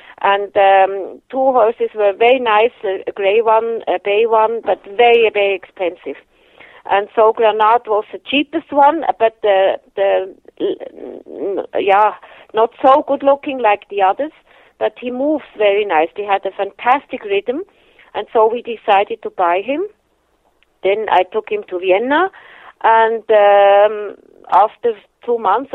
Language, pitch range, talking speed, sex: English, 195-260 Hz, 145 wpm, female